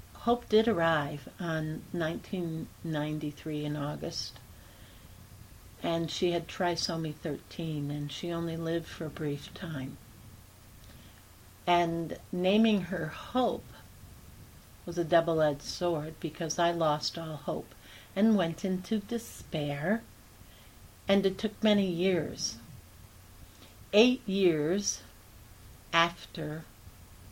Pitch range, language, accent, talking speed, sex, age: 105-175 Hz, English, American, 100 wpm, female, 60-79